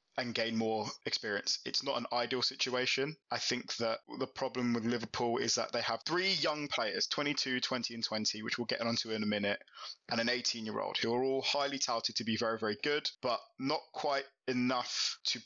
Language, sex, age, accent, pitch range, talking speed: English, male, 20-39, British, 115-135 Hz, 210 wpm